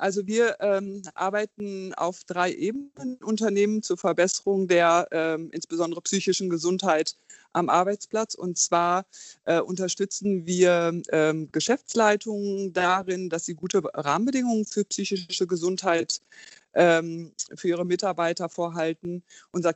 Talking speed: 115 wpm